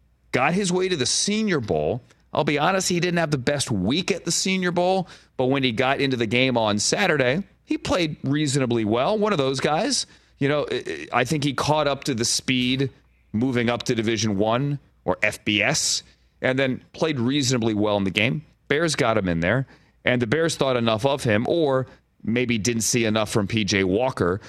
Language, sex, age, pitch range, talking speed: English, male, 30-49, 105-145 Hz, 200 wpm